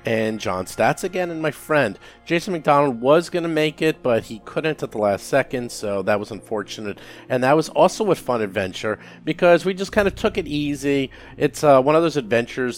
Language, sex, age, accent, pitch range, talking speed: English, male, 40-59, American, 110-155 Hz, 215 wpm